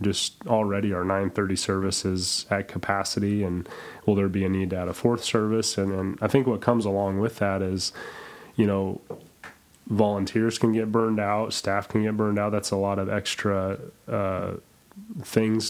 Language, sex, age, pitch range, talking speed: English, male, 30-49, 95-110 Hz, 185 wpm